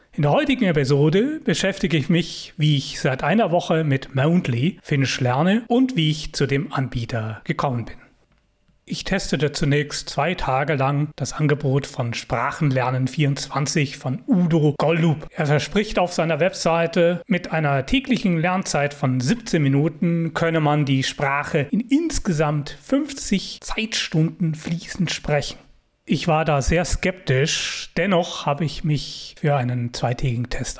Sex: male